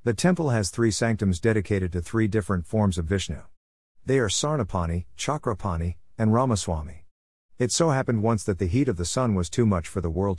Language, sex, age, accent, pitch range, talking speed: English, male, 50-69, American, 85-115 Hz, 195 wpm